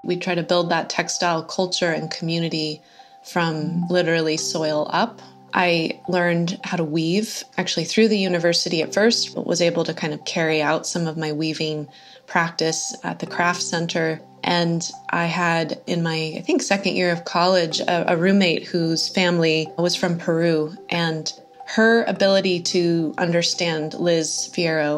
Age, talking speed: 20-39, 160 wpm